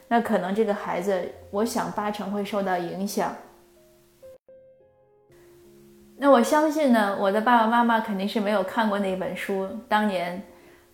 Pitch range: 185-225 Hz